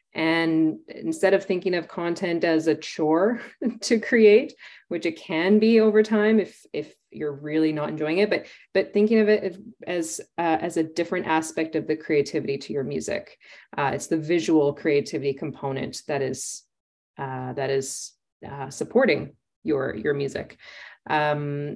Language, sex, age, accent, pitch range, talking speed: English, female, 30-49, American, 160-200 Hz, 160 wpm